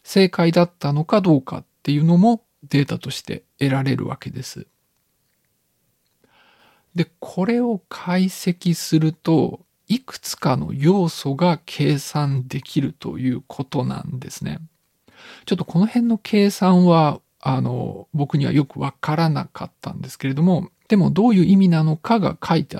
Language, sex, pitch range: Japanese, male, 150-195 Hz